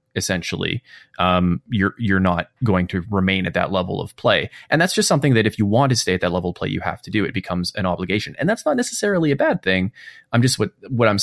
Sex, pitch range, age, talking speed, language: male, 95-120 Hz, 20-39, 255 wpm, English